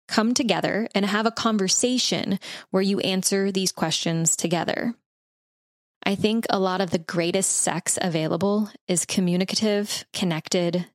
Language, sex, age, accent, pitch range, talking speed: English, female, 20-39, American, 170-200 Hz, 130 wpm